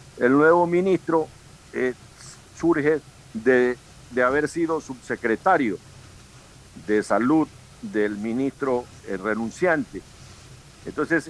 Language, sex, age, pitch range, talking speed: Spanish, male, 60-79, 115-140 Hz, 90 wpm